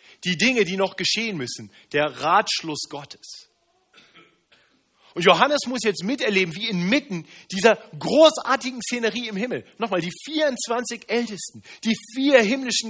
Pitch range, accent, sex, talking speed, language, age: 155-230 Hz, German, male, 130 wpm, German, 40-59